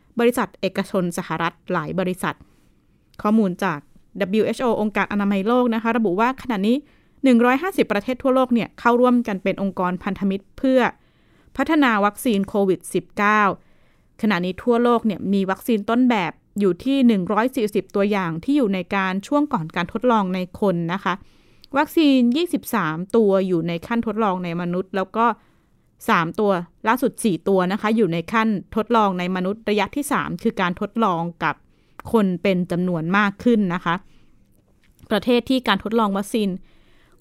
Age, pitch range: 20-39, 185-230 Hz